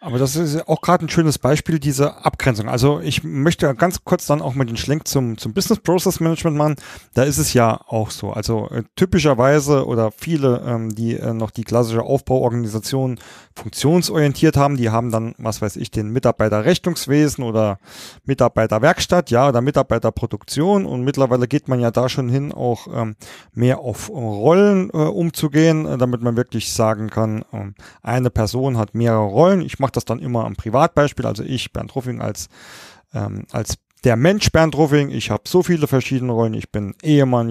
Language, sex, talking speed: German, male, 180 wpm